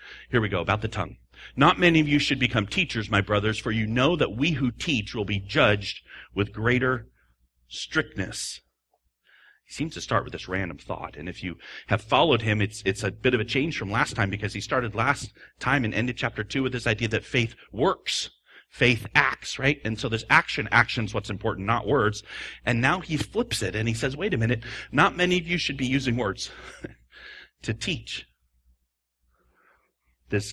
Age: 40-59